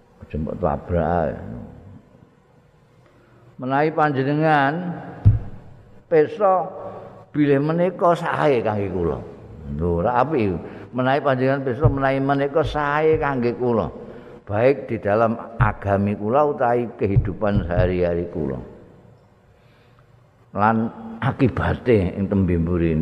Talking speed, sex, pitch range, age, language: 85 wpm, male, 90-135 Hz, 50-69, Indonesian